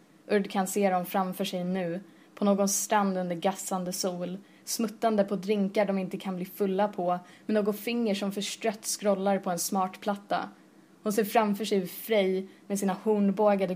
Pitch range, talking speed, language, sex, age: 190-215 Hz, 175 wpm, Swedish, female, 20-39